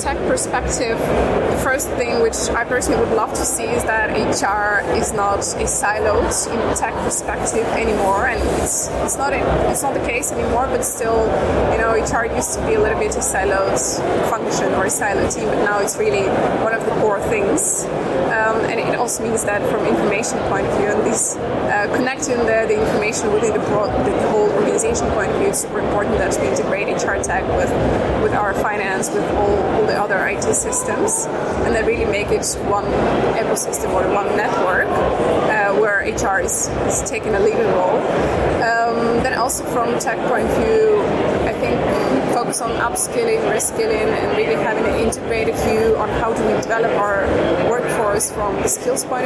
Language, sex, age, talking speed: English, female, 20-39, 190 wpm